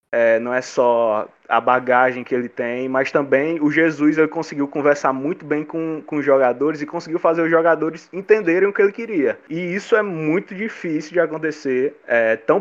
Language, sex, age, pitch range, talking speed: Portuguese, male, 20-39, 130-165 Hz, 180 wpm